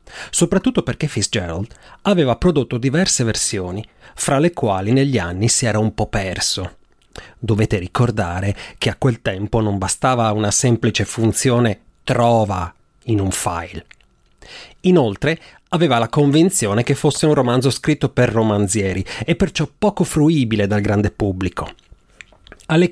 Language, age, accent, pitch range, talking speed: Italian, 30-49, native, 105-155 Hz, 135 wpm